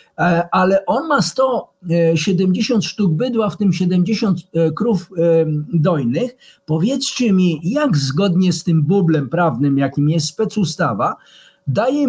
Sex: male